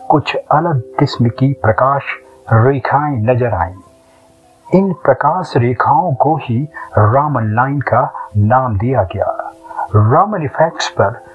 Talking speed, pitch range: 95 wpm, 110-145 Hz